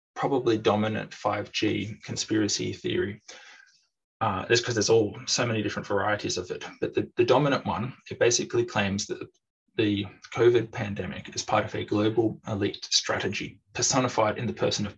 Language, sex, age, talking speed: English, male, 20-39, 160 wpm